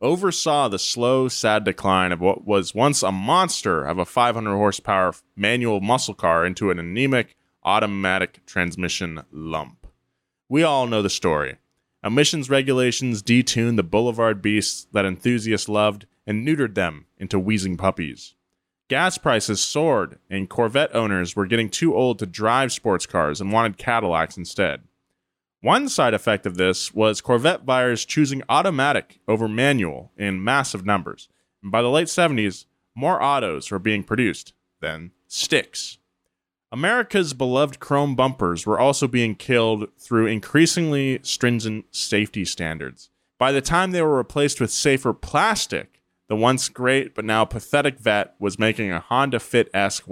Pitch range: 95-125 Hz